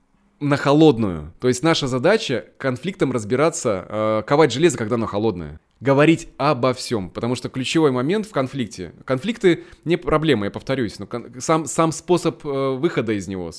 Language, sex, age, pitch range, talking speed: Russian, male, 20-39, 120-160 Hz, 150 wpm